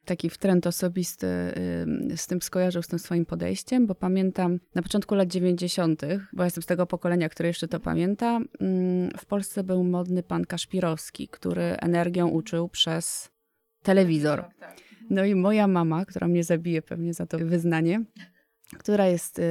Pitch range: 170-200 Hz